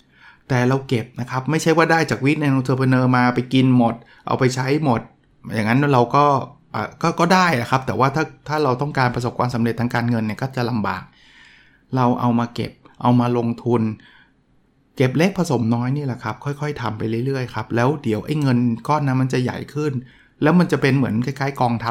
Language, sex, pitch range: Thai, male, 120-140 Hz